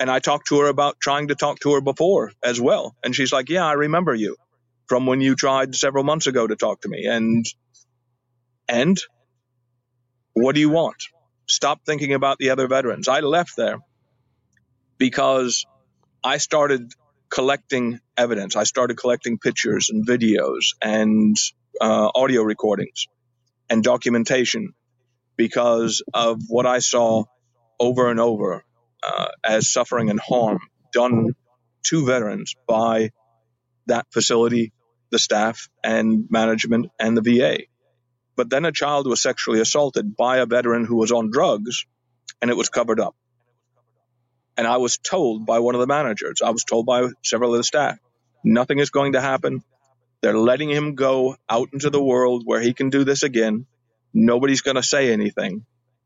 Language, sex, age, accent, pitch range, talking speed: English, male, 50-69, American, 115-135 Hz, 160 wpm